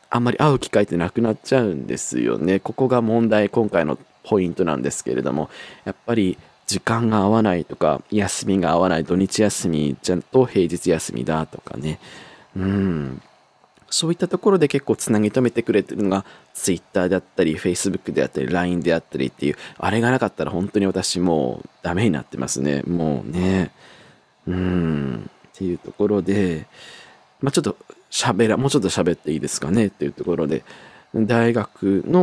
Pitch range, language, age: 90-120 Hz, Japanese, 20-39